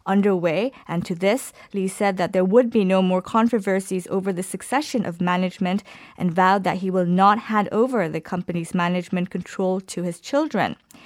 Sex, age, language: female, 20-39, Korean